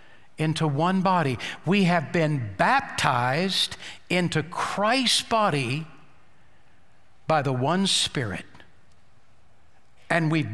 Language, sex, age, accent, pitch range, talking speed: English, male, 60-79, American, 140-200 Hz, 90 wpm